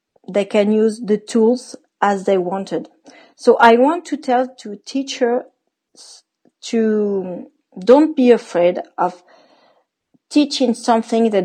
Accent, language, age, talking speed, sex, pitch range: French, English, 40-59, 120 wpm, female, 195-245 Hz